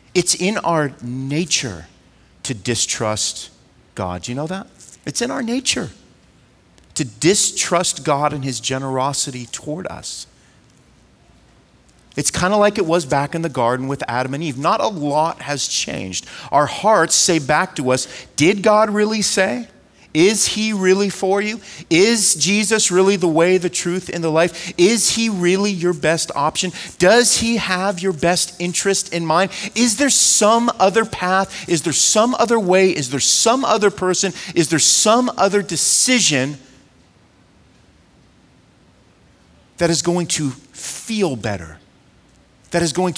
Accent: American